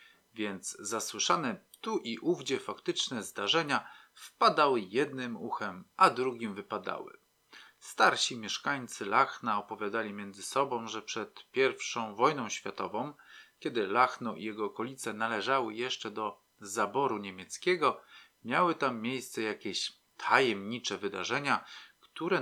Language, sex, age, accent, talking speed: Polish, male, 40-59, native, 110 wpm